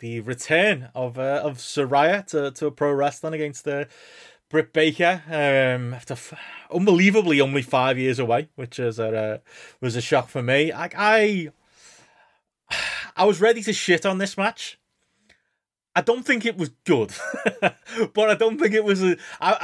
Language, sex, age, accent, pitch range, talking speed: English, male, 20-39, British, 125-160 Hz, 175 wpm